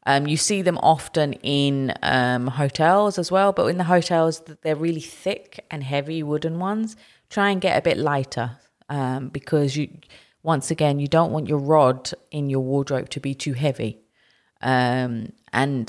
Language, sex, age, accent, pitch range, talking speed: English, female, 30-49, British, 125-155 Hz, 170 wpm